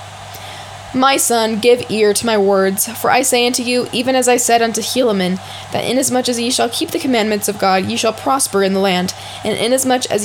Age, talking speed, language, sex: 10-29, 215 wpm, English, female